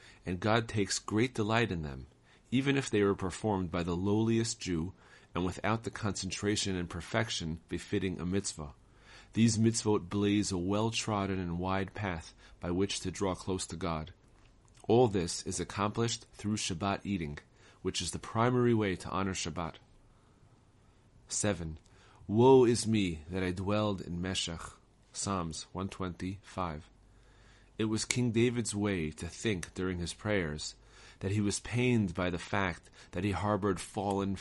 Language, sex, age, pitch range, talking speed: English, male, 40-59, 90-110 Hz, 155 wpm